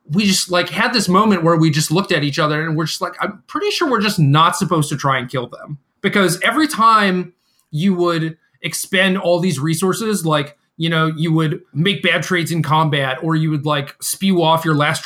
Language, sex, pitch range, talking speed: English, male, 150-185 Hz, 225 wpm